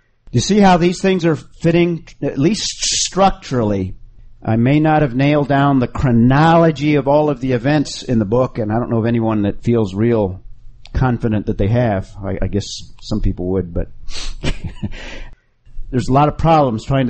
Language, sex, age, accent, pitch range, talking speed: English, male, 50-69, American, 110-150 Hz, 185 wpm